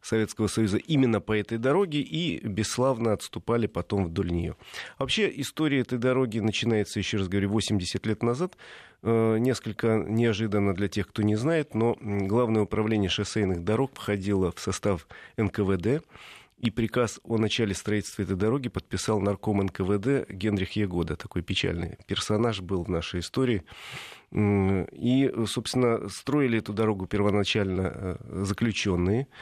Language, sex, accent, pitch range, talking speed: Russian, male, native, 100-120 Hz, 135 wpm